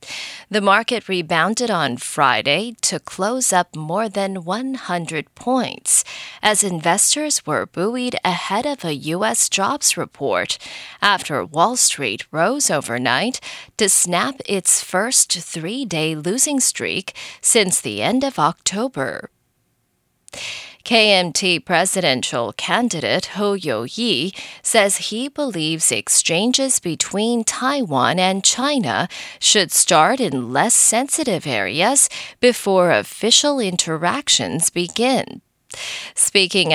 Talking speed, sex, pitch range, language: 105 wpm, female, 175-245 Hz, English